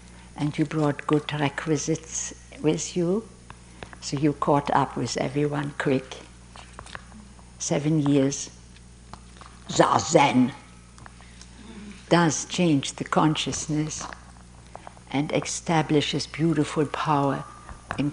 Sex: female